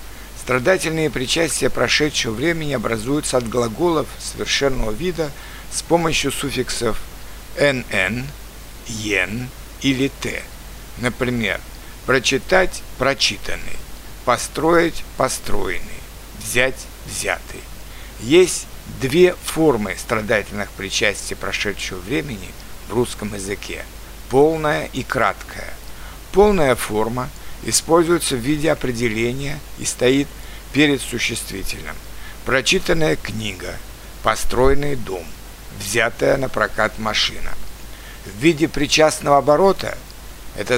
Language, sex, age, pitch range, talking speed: Russian, male, 60-79, 110-150 Hz, 85 wpm